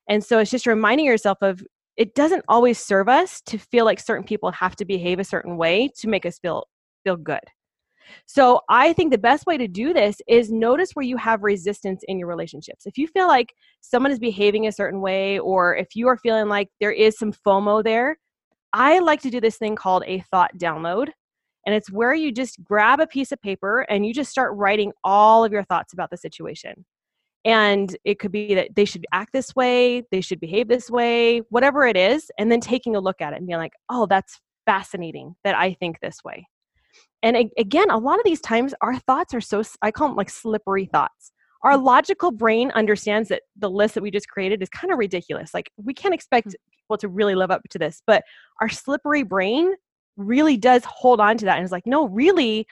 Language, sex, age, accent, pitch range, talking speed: English, female, 20-39, American, 195-250 Hz, 220 wpm